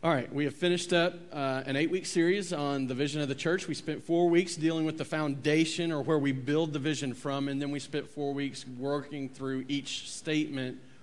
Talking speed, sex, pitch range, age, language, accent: 225 wpm, male, 125-145 Hz, 40-59, English, American